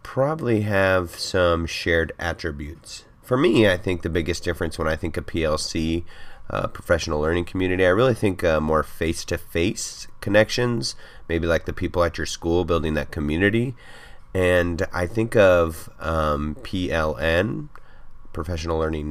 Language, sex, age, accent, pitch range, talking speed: English, male, 30-49, American, 80-110 Hz, 150 wpm